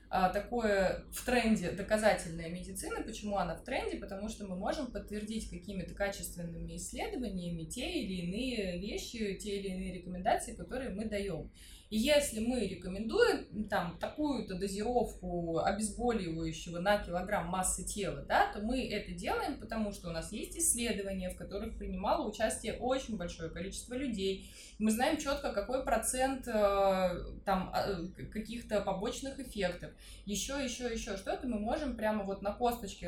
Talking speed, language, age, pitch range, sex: 140 wpm, Russian, 20-39, 190-240 Hz, female